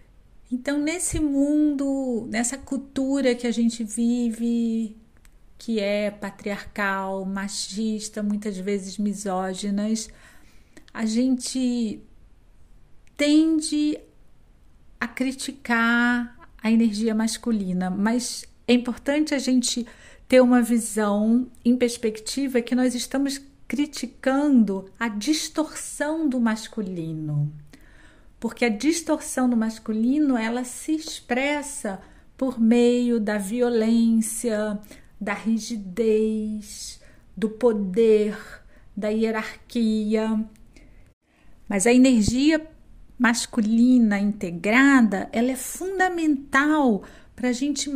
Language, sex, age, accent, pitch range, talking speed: Portuguese, female, 40-59, Brazilian, 220-275 Hz, 90 wpm